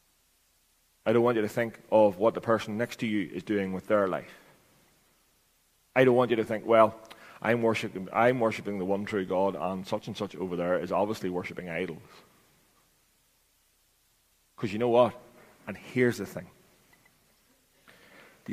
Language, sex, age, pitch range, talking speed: English, male, 30-49, 95-110 Hz, 165 wpm